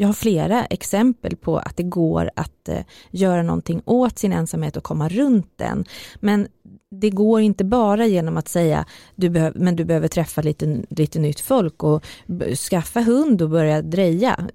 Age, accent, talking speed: 30-49, native, 165 wpm